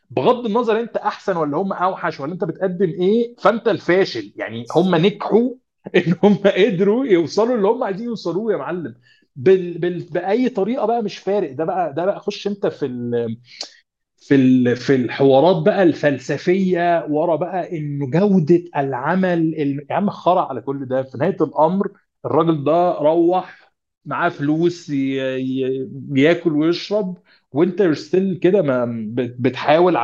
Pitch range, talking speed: 140-195 Hz, 150 wpm